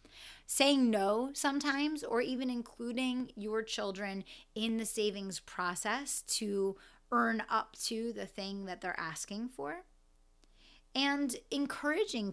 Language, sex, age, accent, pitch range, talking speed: English, female, 30-49, American, 195-245 Hz, 115 wpm